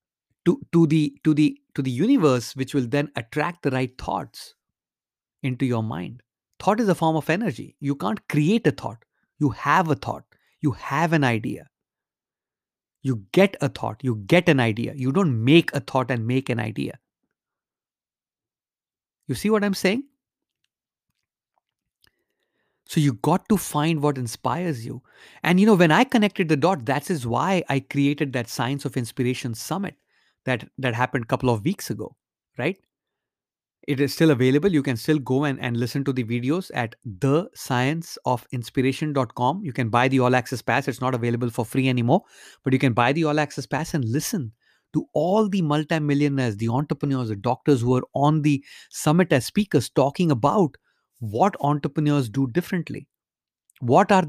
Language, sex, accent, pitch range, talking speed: English, male, Indian, 125-165 Hz, 170 wpm